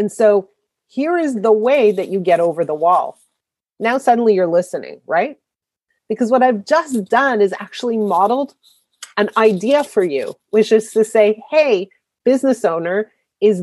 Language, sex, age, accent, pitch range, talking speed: English, female, 30-49, American, 190-245 Hz, 165 wpm